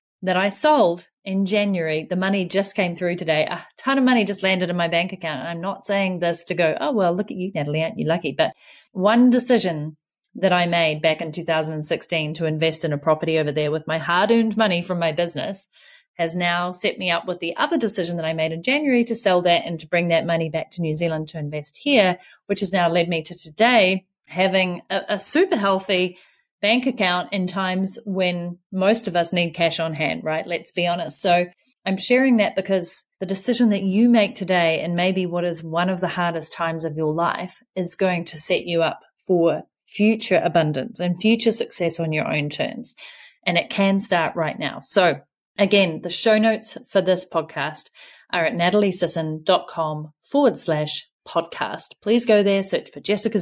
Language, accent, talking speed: English, Australian, 205 wpm